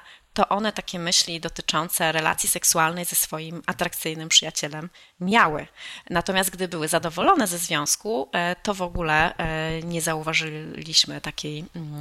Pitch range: 165-195 Hz